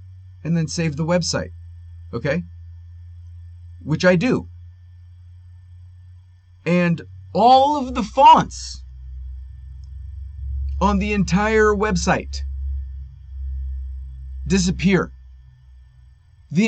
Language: English